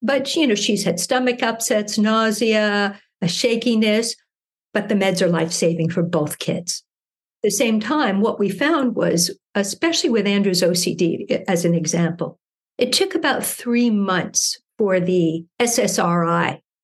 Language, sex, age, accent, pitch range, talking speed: English, female, 60-79, American, 180-230 Hz, 145 wpm